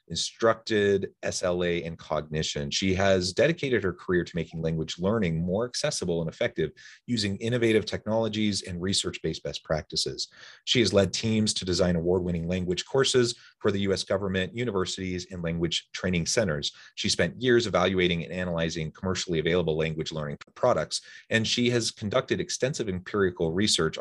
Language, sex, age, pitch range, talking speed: English, male, 30-49, 80-110 Hz, 155 wpm